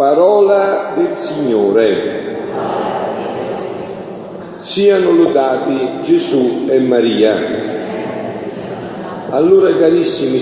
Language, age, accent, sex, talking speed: Italian, 50-69, native, male, 60 wpm